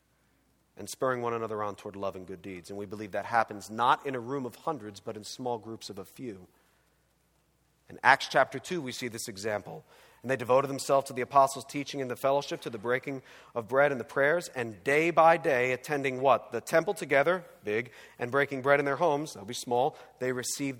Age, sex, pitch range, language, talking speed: 40-59, male, 110-160 Hz, English, 220 wpm